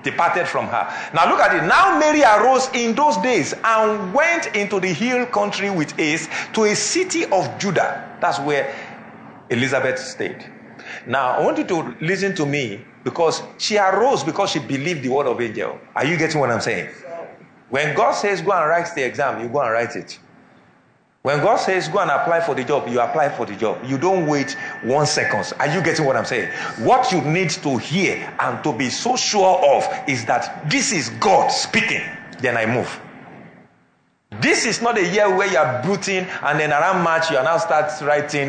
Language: English